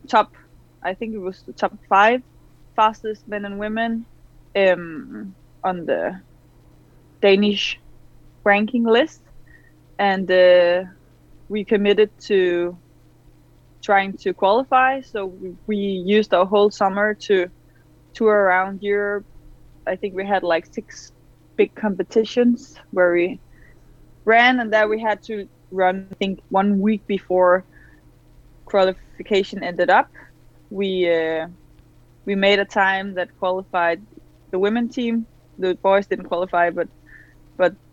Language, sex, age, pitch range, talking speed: English, female, 20-39, 180-215 Hz, 125 wpm